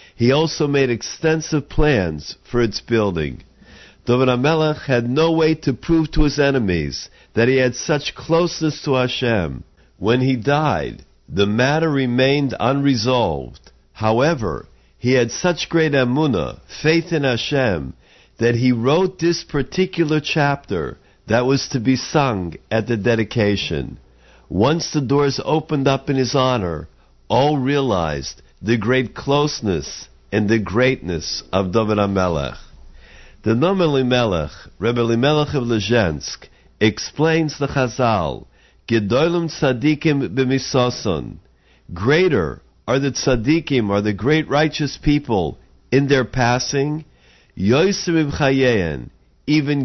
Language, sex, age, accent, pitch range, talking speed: English, male, 50-69, American, 105-145 Hz, 120 wpm